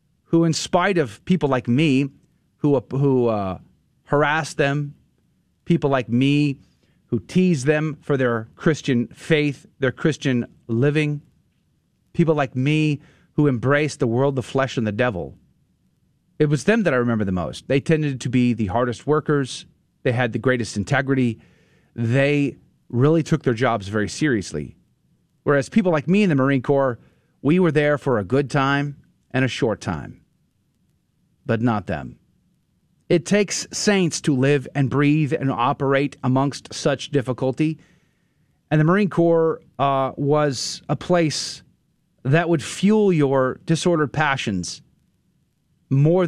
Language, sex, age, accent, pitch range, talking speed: English, male, 40-59, American, 125-155 Hz, 145 wpm